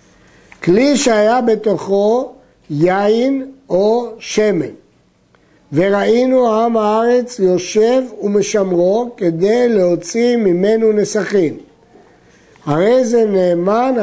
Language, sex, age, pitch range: Hebrew, male, 60-79, 175-235 Hz